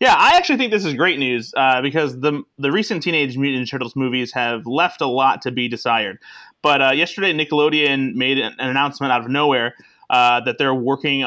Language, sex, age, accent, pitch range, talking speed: English, male, 30-49, American, 120-145 Hz, 210 wpm